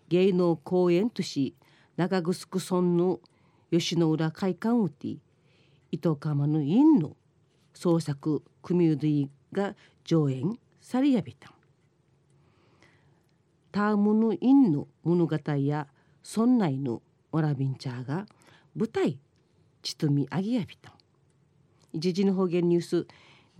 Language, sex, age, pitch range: Japanese, female, 40-59, 145-205 Hz